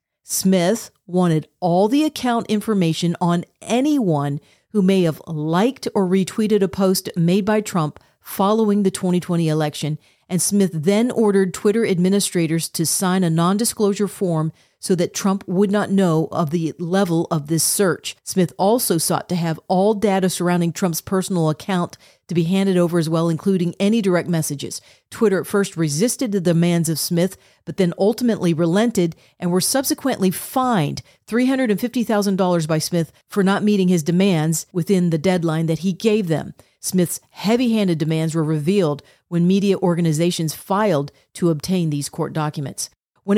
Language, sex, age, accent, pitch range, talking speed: English, female, 40-59, American, 170-200 Hz, 155 wpm